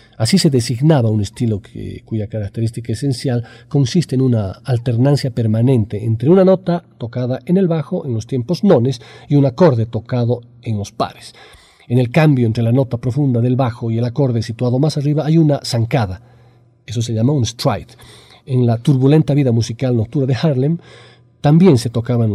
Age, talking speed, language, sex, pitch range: 40-59, 175 wpm, Spanish, male, 110-135 Hz